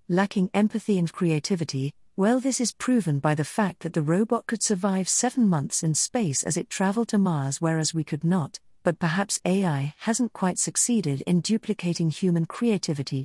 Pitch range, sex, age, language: 160-210 Hz, female, 40-59, English